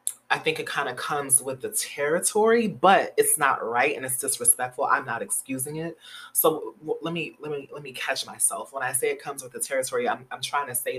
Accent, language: American, English